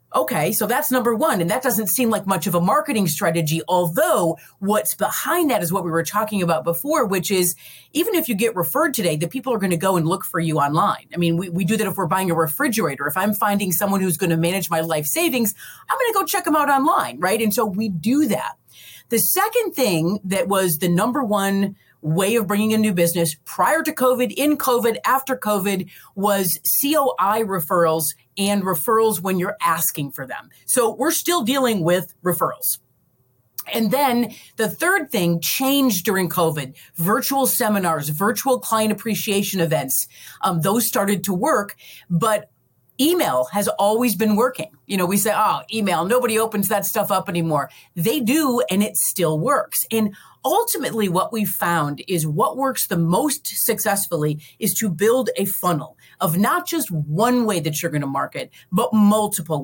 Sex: female